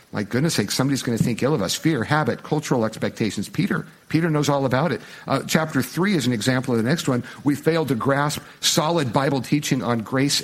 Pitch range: 130-170 Hz